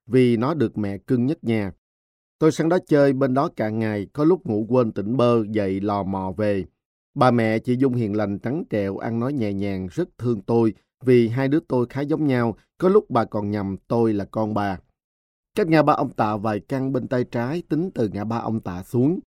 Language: Vietnamese